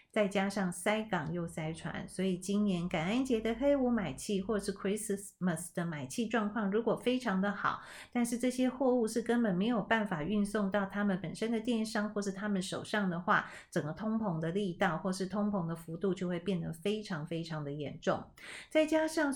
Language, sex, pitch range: Chinese, female, 175-215 Hz